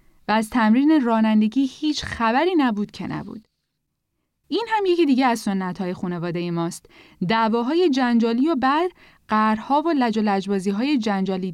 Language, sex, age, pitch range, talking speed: Persian, female, 10-29, 200-265 Hz, 145 wpm